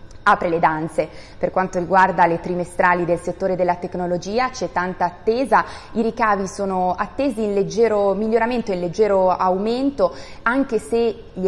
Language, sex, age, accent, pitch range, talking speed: Italian, female, 20-39, native, 175-210 Hz, 145 wpm